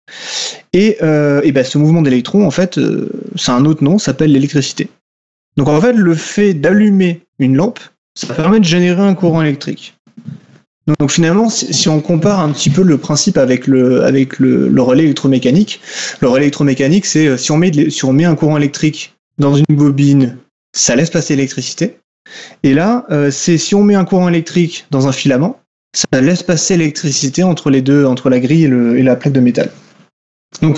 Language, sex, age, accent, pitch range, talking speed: French, male, 30-49, French, 140-180 Hz, 205 wpm